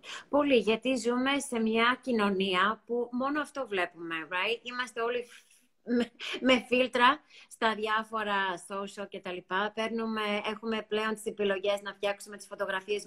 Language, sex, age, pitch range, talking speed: Greek, female, 20-39, 205-240 Hz, 140 wpm